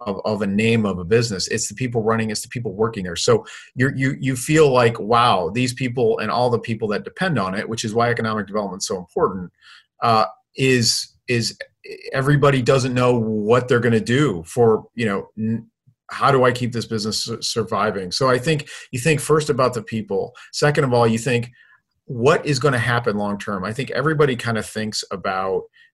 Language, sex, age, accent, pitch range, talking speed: English, male, 40-59, American, 110-135 Hz, 215 wpm